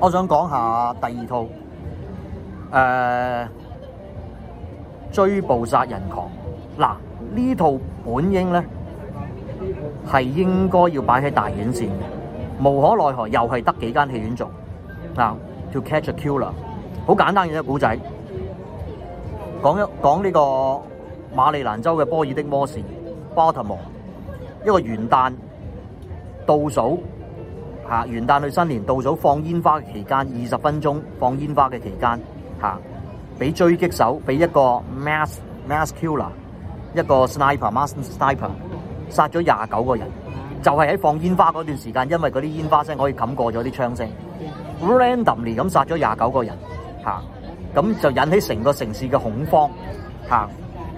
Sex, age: male, 30-49